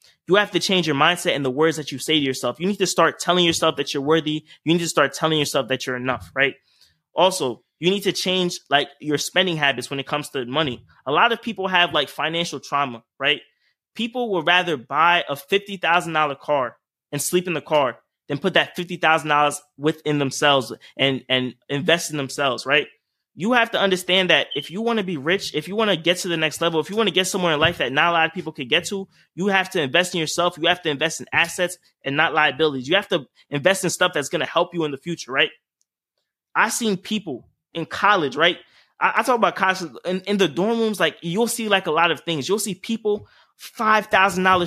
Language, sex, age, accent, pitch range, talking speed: English, male, 20-39, American, 145-190 Hz, 240 wpm